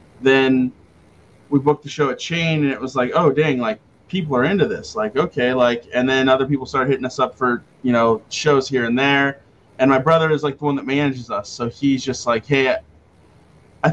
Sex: male